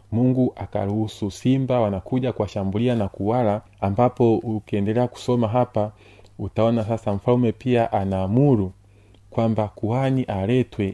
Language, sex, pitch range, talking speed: Swahili, male, 100-120 Hz, 105 wpm